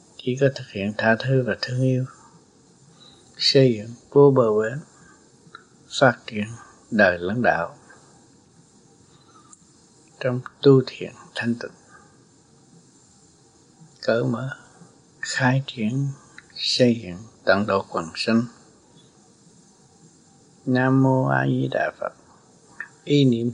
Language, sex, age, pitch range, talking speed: Vietnamese, male, 60-79, 115-140 Hz, 105 wpm